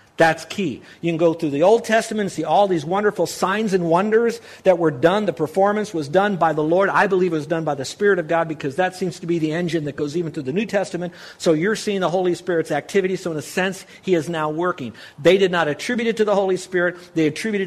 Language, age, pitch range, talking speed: English, 50-69, 140-185 Hz, 260 wpm